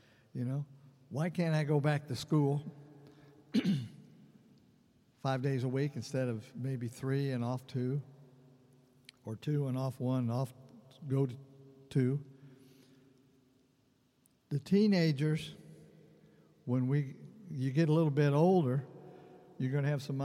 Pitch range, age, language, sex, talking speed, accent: 125-145 Hz, 60-79, English, male, 130 wpm, American